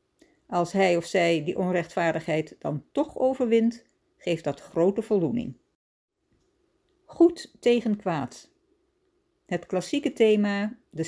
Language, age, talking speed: Dutch, 60-79, 110 wpm